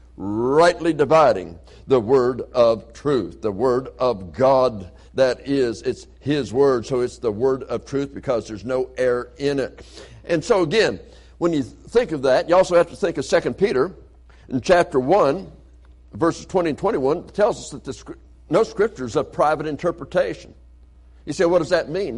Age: 60-79